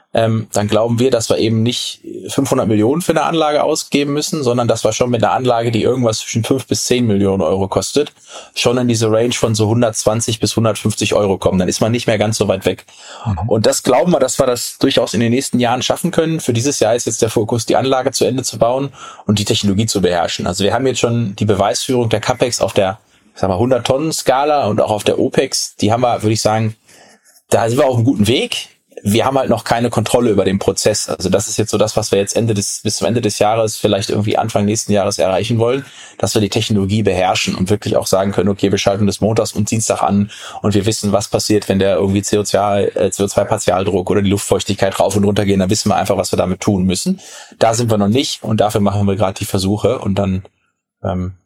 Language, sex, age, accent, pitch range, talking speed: German, male, 20-39, German, 100-120 Hz, 245 wpm